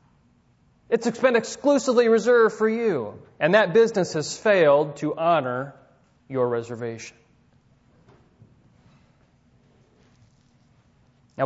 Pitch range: 135-210 Hz